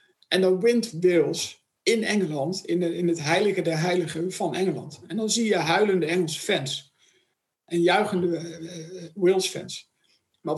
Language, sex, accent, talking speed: Dutch, male, Dutch, 160 wpm